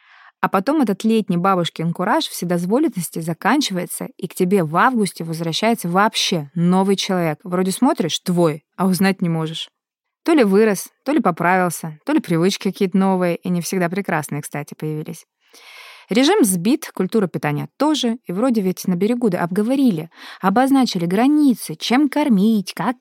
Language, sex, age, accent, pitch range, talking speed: Russian, female, 20-39, native, 175-225 Hz, 150 wpm